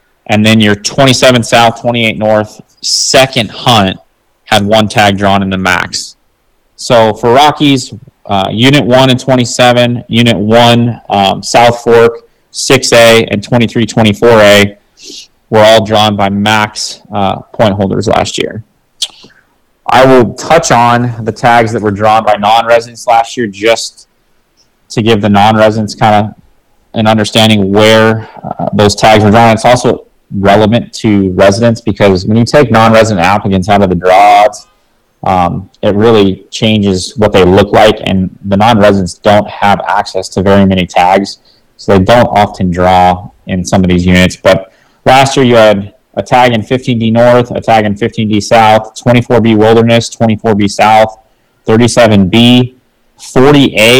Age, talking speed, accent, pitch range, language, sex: 20-39, 150 wpm, American, 100-120 Hz, English, male